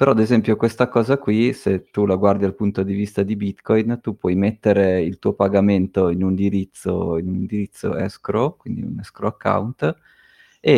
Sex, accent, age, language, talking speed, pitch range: male, native, 30-49, Italian, 180 wpm, 95-110 Hz